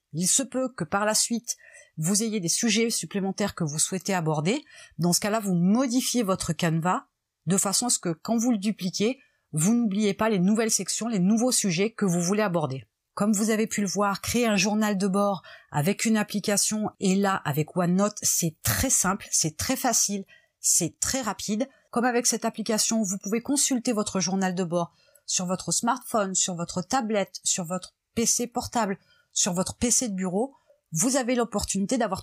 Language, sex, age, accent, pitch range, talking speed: French, female, 30-49, French, 185-235 Hz, 190 wpm